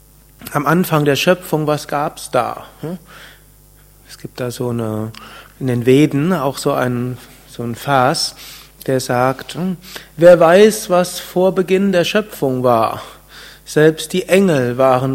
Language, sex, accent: German, male, German